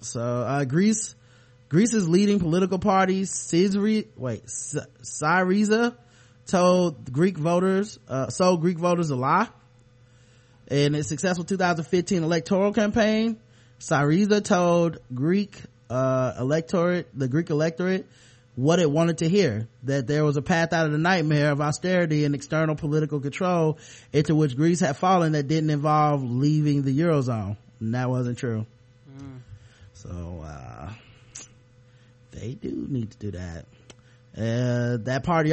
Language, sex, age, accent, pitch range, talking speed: English, male, 20-39, American, 125-175 Hz, 135 wpm